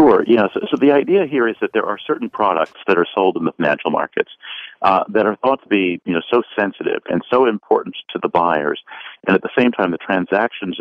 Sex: male